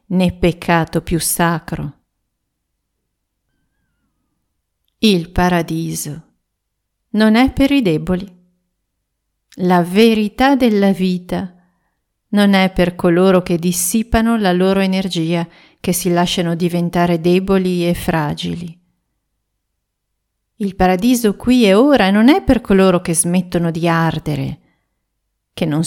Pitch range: 170-210 Hz